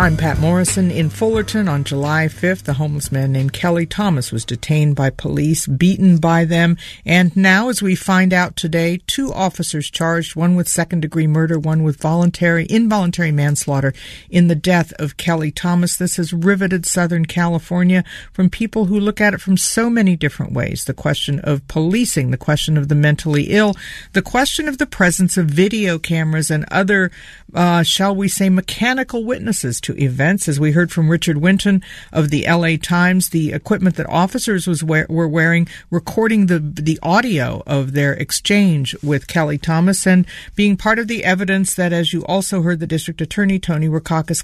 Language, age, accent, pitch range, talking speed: English, 50-69, American, 155-195 Hz, 180 wpm